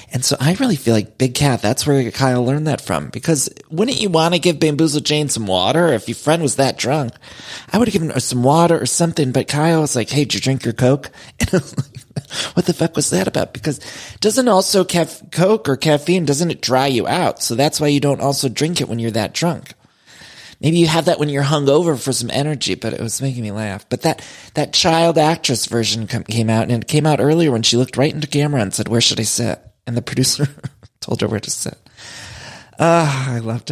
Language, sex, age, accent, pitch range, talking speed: English, male, 30-49, American, 120-160 Hz, 245 wpm